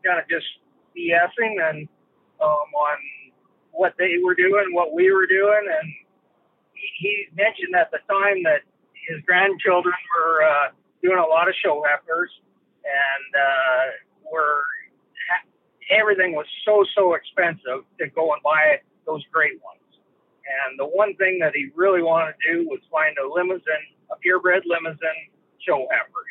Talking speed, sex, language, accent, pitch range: 145 wpm, male, English, American, 160-215 Hz